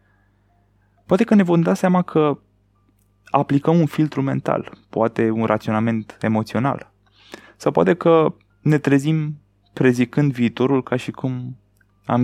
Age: 20-39